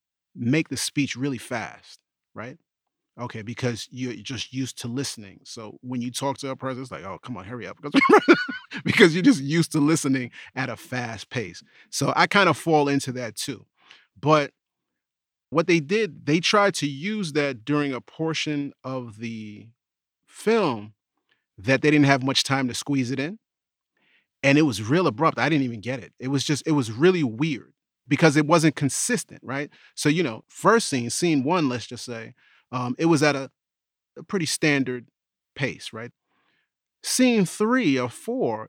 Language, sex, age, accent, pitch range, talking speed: English, male, 30-49, American, 125-170 Hz, 180 wpm